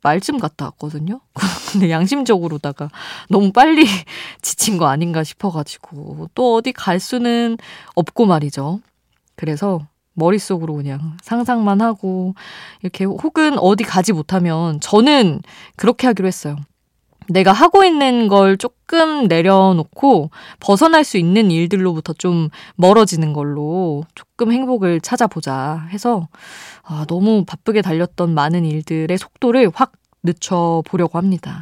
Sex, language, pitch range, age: female, Korean, 155-210 Hz, 20-39